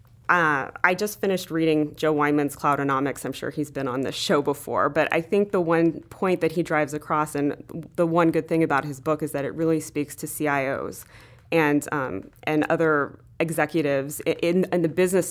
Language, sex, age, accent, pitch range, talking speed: English, female, 20-39, American, 145-170 Hz, 195 wpm